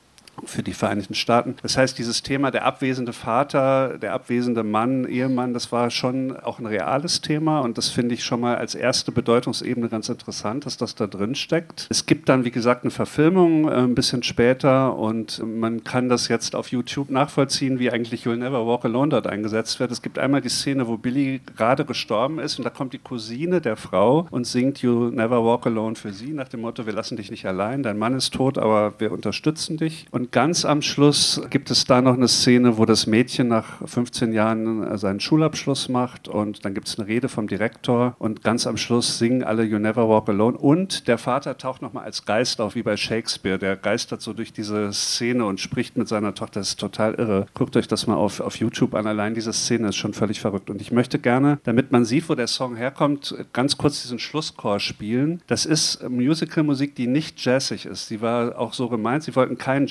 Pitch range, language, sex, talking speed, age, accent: 110-135 Hz, German, male, 215 wpm, 50-69, German